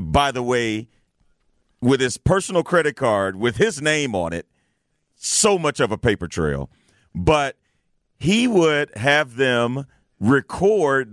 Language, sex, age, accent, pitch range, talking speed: English, male, 40-59, American, 125-165 Hz, 135 wpm